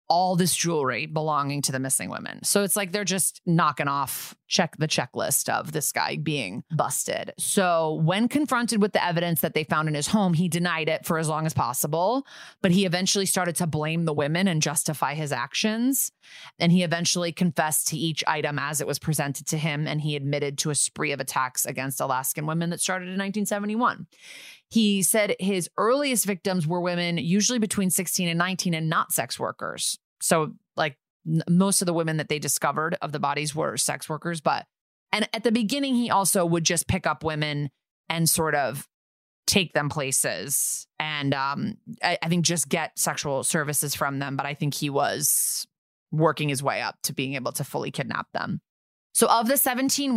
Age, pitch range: 30-49, 150-195 Hz